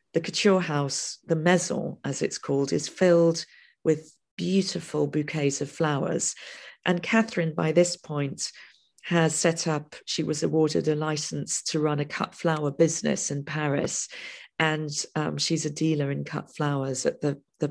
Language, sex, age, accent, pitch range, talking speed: English, female, 40-59, British, 145-175 Hz, 160 wpm